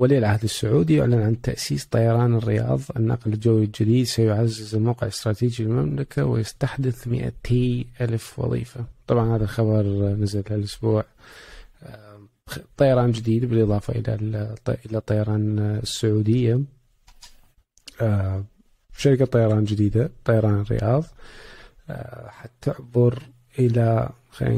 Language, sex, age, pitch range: Arabic, male, 20-39, 110-125 Hz